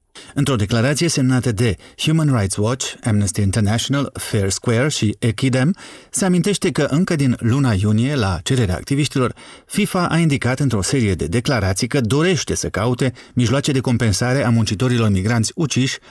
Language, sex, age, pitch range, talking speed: Romanian, male, 40-59, 110-145 Hz, 155 wpm